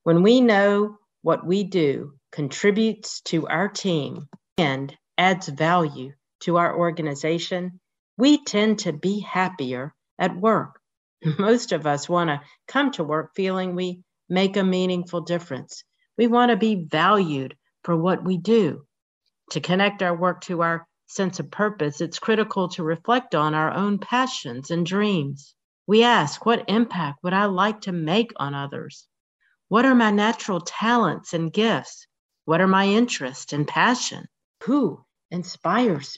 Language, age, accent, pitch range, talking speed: English, 50-69, American, 160-215 Hz, 150 wpm